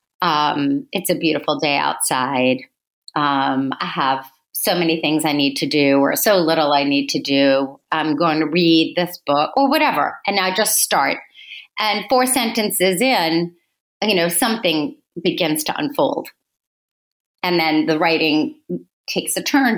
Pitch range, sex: 150-215 Hz, female